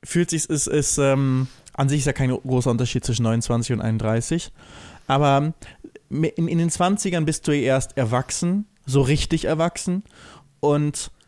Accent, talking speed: German, 160 wpm